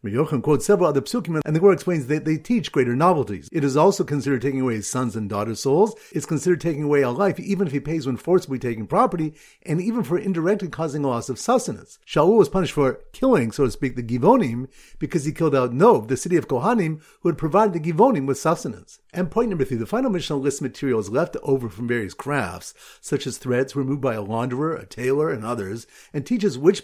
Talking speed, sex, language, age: 230 wpm, male, English, 50-69